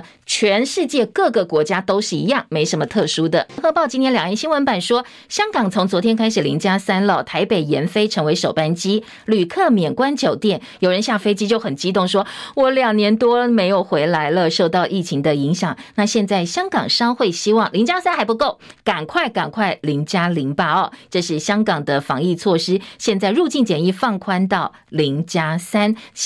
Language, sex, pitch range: Chinese, female, 175-240 Hz